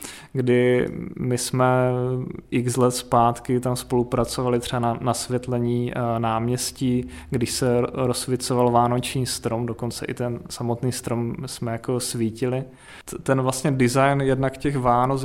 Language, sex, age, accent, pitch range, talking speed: Czech, male, 20-39, native, 120-130 Hz, 120 wpm